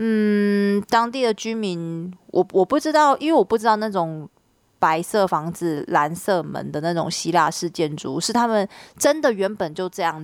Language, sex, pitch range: Chinese, female, 170-215 Hz